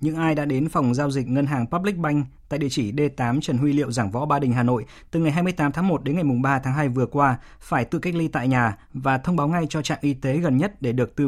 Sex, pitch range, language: male, 125-155 Hz, Vietnamese